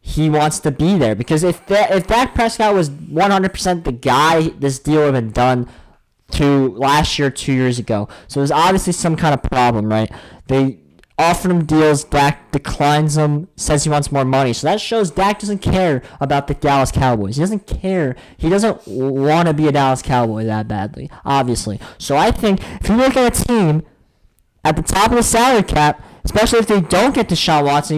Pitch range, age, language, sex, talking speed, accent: 125-180 Hz, 20-39, English, male, 200 wpm, American